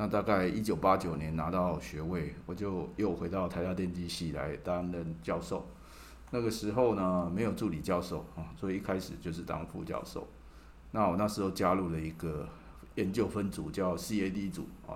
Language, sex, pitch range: Chinese, male, 85-95 Hz